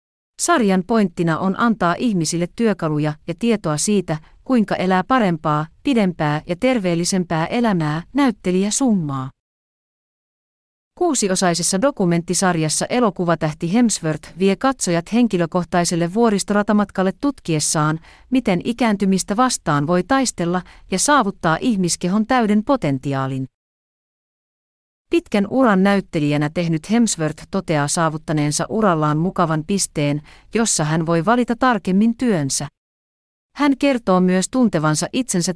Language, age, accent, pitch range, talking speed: Finnish, 40-59, native, 160-220 Hz, 100 wpm